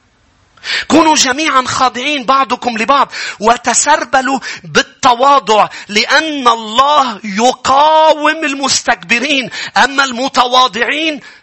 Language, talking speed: English, 70 wpm